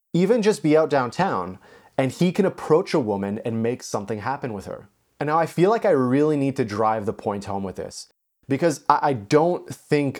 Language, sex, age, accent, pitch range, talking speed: English, male, 30-49, American, 115-155 Hz, 210 wpm